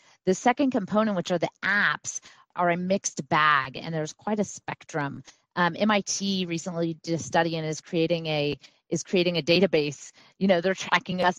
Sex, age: female, 30-49